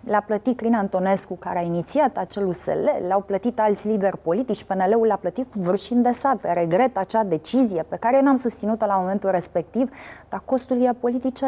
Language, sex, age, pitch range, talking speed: Romanian, female, 20-39, 185-245 Hz, 190 wpm